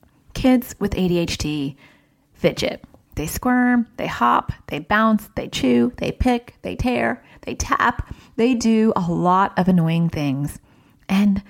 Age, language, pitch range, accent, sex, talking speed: 30-49, English, 165-225 Hz, American, female, 135 wpm